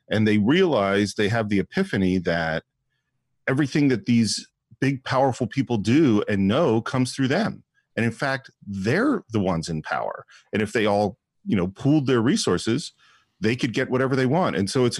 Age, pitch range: 40-59, 100-135 Hz